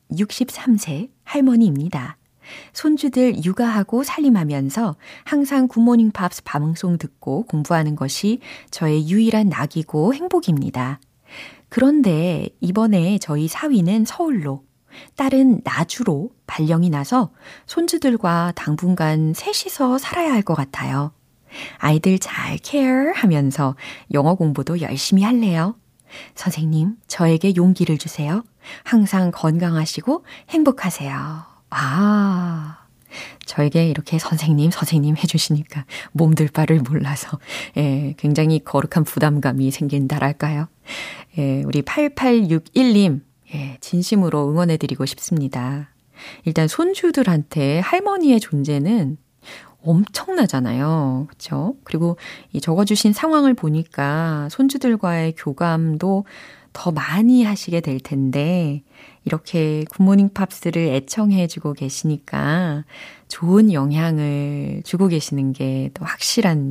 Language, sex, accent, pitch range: Korean, female, native, 145-210 Hz